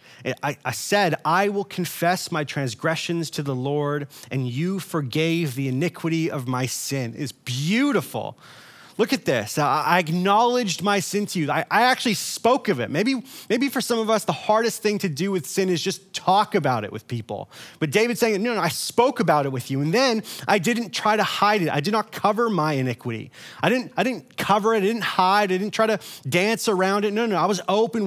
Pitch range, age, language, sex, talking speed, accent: 150-215 Hz, 30-49, English, male, 215 wpm, American